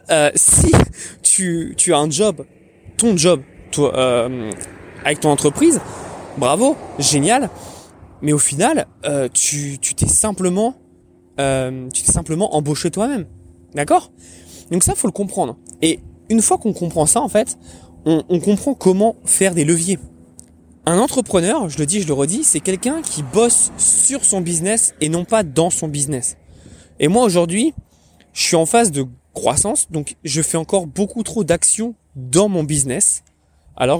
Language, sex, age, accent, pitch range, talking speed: French, male, 20-39, French, 130-200 Hz, 165 wpm